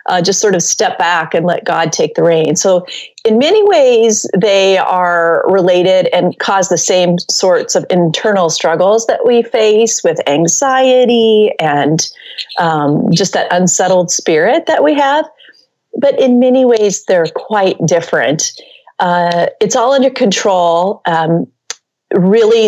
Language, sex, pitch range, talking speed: English, female, 170-225 Hz, 145 wpm